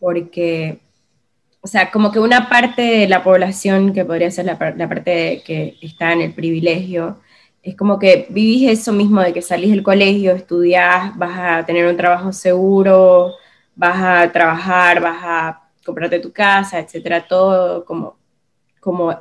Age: 20-39